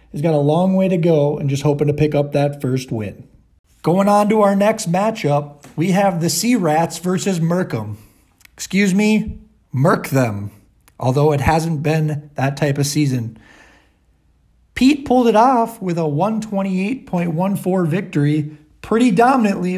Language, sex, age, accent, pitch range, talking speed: English, male, 40-59, American, 145-190 Hz, 155 wpm